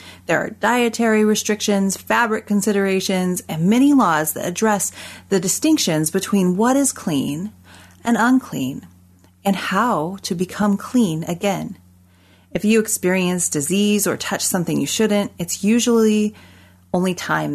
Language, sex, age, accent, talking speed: English, female, 30-49, American, 130 wpm